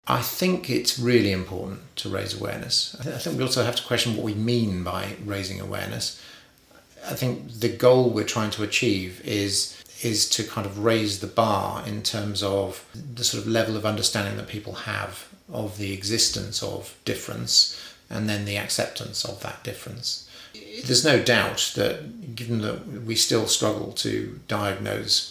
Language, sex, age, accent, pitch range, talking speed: English, male, 40-59, British, 100-115 Hz, 170 wpm